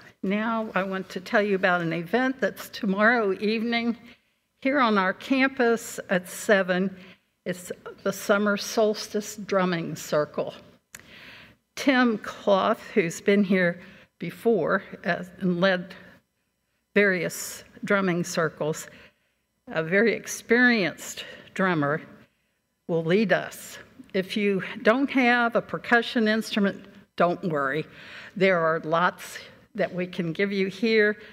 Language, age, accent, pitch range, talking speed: English, 60-79, American, 180-220 Hz, 115 wpm